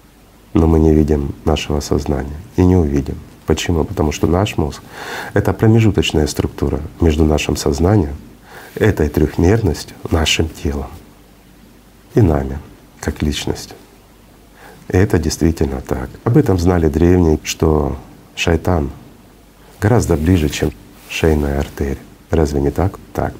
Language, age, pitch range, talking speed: Russian, 40-59, 75-95 Hz, 125 wpm